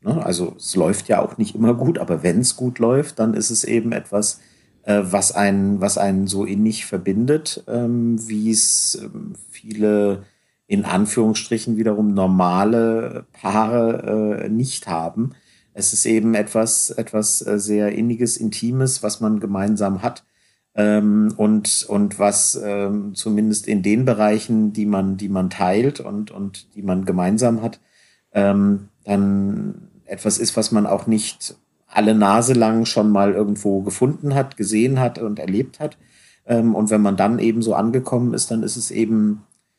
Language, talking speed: German, 155 wpm